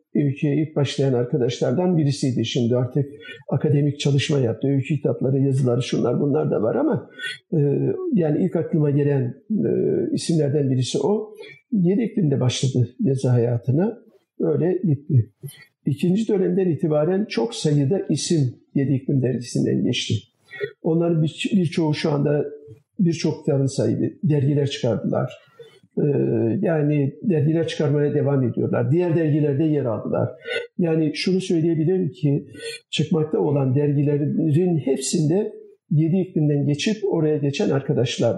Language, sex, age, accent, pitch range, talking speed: Turkish, male, 50-69, native, 135-175 Hz, 115 wpm